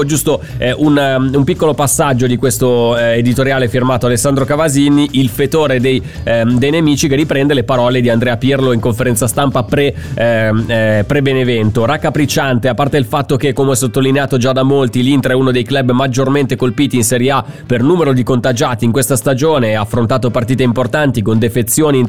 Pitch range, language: 125-155 Hz, Italian